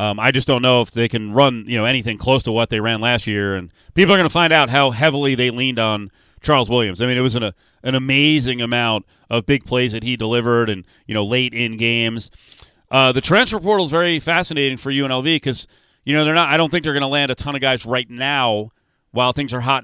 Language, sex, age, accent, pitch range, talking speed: English, male, 30-49, American, 120-155 Hz, 255 wpm